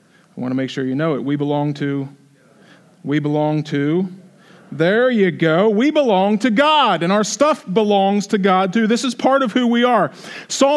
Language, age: English, 40-59